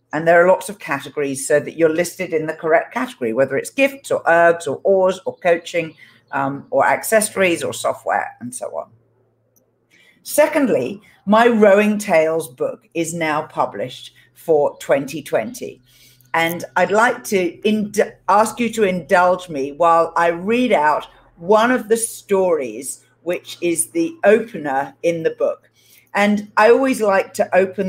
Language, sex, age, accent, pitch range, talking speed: English, female, 50-69, British, 155-210 Hz, 155 wpm